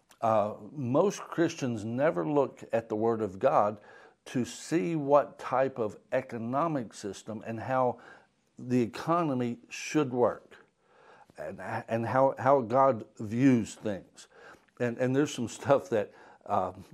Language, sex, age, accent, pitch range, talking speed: English, male, 60-79, American, 115-150 Hz, 130 wpm